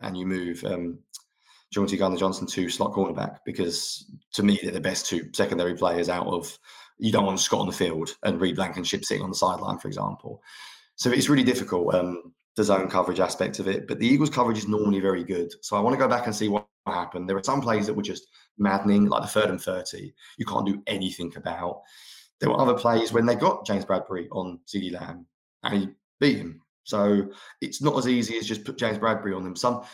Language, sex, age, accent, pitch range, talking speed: English, male, 20-39, British, 95-115 Hz, 225 wpm